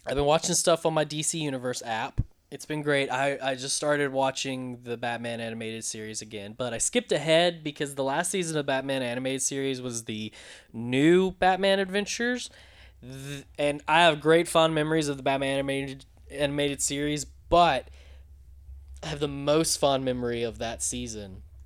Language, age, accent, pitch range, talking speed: English, 20-39, American, 115-150 Hz, 170 wpm